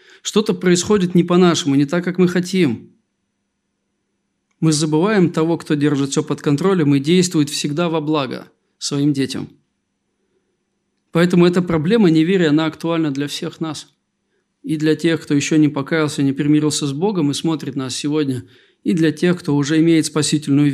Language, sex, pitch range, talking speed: Russian, male, 150-180 Hz, 160 wpm